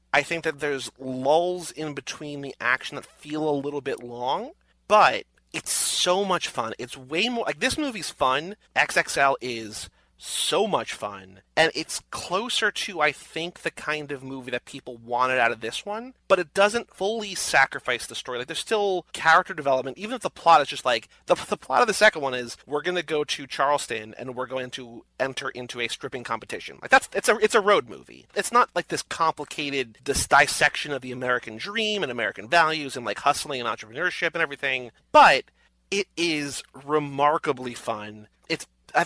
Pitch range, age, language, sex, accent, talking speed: 125-165 Hz, 30-49, English, male, American, 190 wpm